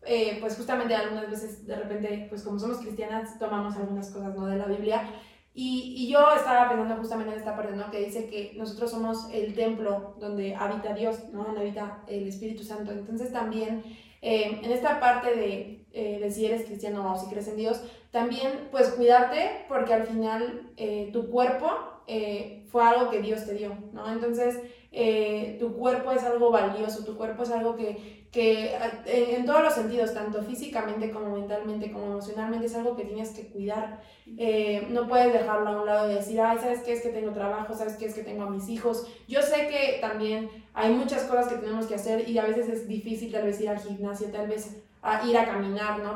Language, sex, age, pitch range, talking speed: Spanish, female, 20-39, 210-235 Hz, 210 wpm